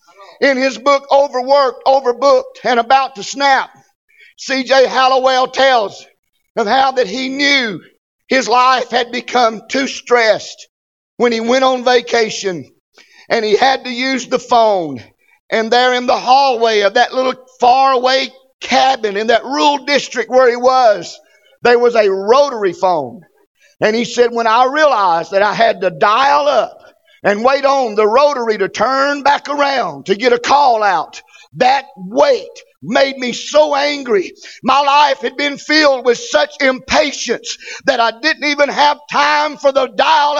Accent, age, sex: American, 50-69, male